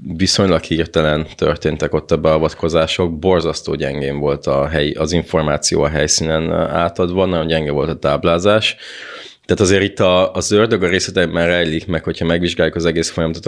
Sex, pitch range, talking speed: male, 80-90 Hz, 160 wpm